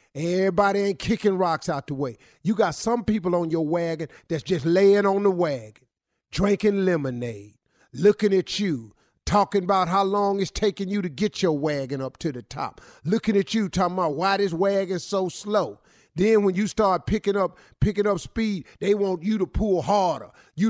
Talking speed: 190 wpm